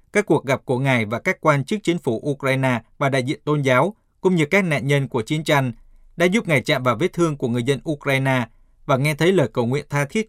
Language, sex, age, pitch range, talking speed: Vietnamese, male, 20-39, 130-170 Hz, 255 wpm